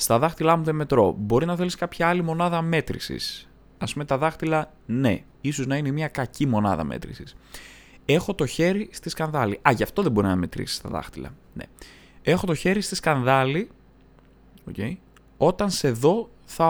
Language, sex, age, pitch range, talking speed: Greek, male, 20-39, 100-170 Hz, 175 wpm